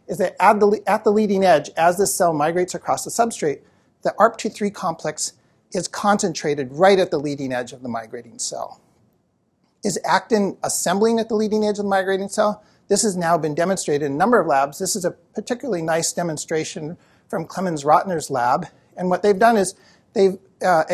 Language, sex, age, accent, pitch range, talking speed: English, male, 50-69, American, 155-210 Hz, 200 wpm